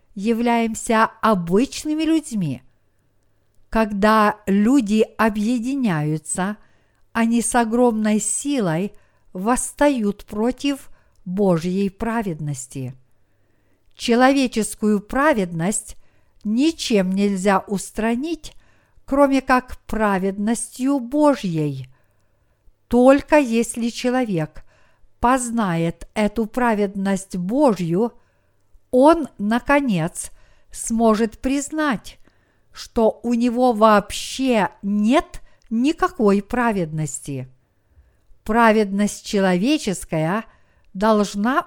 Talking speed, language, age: 65 wpm, Russian, 50-69